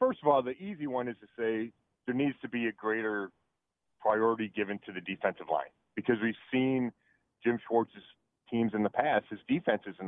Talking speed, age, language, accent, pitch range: 195 wpm, 40-59, English, American, 110-135 Hz